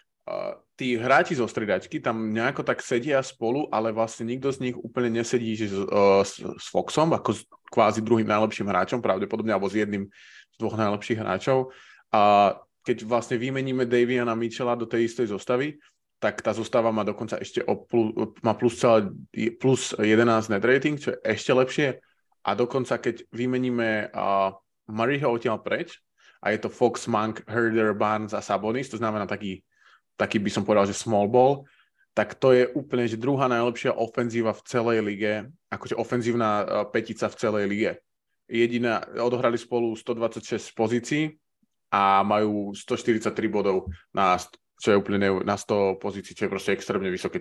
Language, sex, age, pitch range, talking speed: Slovak, male, 20-39, 105-120 Hz, 165 wpm